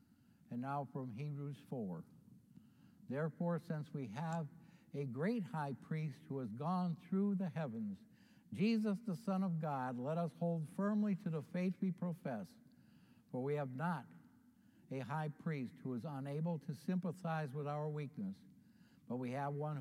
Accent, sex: American, male